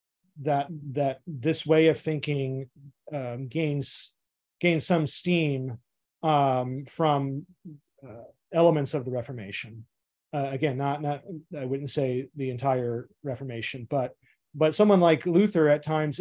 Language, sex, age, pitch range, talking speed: English, male, 40-59, 130-155 Hz, 130 wpm